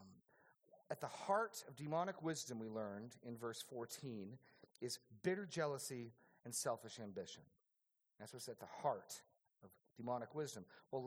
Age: 40-59